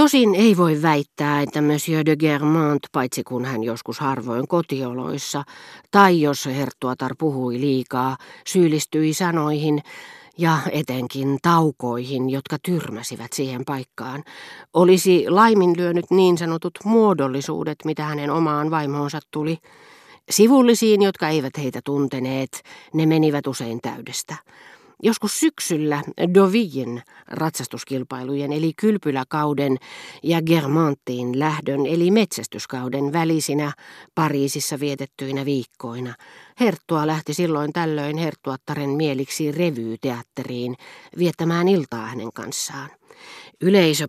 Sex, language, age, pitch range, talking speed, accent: female, Finnish, 40-59, 135-165 Hz, 100 wpm, native